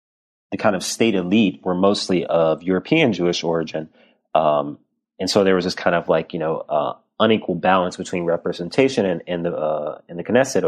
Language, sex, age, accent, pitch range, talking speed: English, male, 30-49, American, 85-100 Hz, 190 wpm